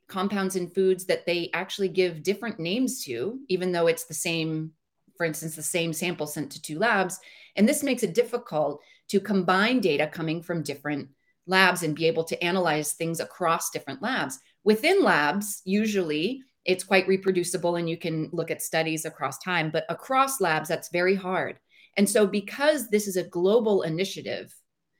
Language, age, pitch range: English, 30-49, 165-205 Hz